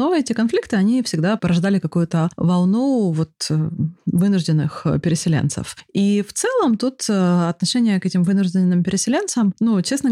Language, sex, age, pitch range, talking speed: Russian, female, 30-49, 160-200 Hz, 130 wpm